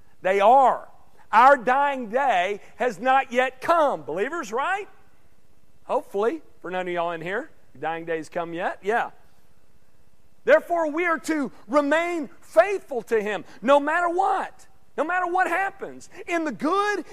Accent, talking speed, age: American, 145 wpm, 40-59